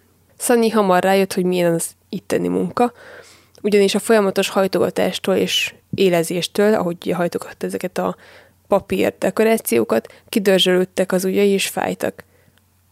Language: Hungarian